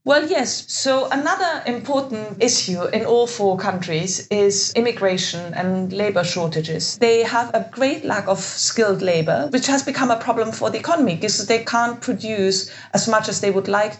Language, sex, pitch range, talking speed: English, female, 175-220 Hz, 175 wpm